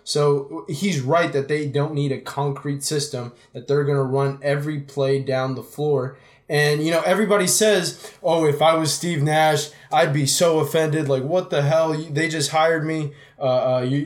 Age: 20-39